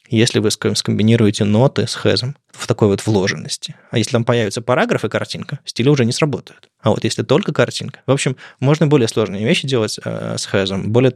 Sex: male